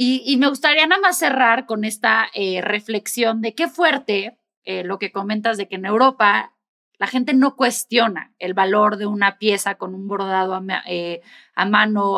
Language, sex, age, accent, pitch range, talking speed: Spanish, female, 20-39, Mexican, 195-235 Hz, 190 wpm